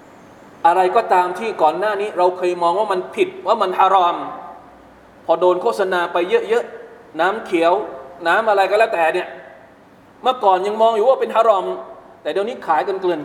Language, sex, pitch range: Thai, male, 175-255 Hz